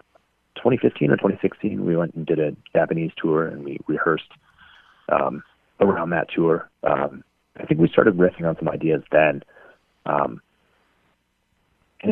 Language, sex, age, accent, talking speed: English, male, 40-59, American, 145 wpm